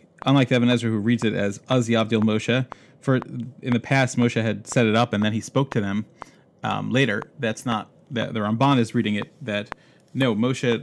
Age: 30-49